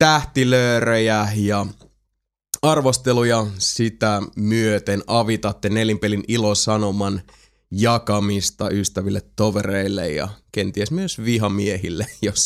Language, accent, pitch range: Finnish, native, 105-130 Hz